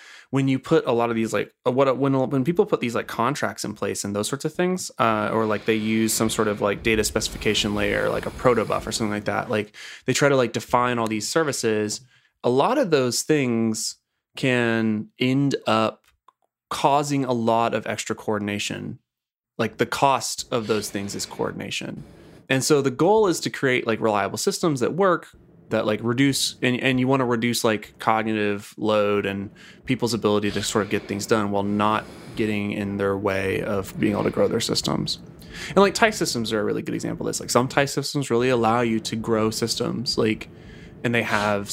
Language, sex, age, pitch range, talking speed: English, male, 20-39, 105-130 Hz, 205 wpm